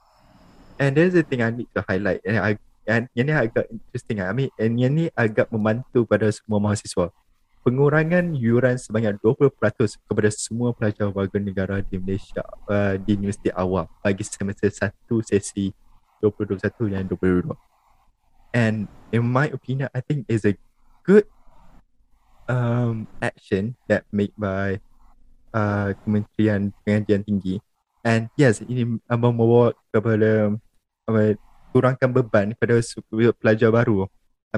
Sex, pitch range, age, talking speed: male, 100-120 Hz, 20-39, 135 wpm